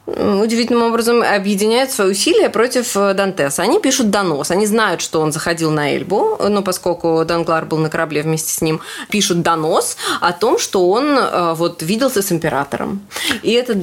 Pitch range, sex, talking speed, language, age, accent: 170-220 Hz, female, 165 wpm, Russian, 20-39, native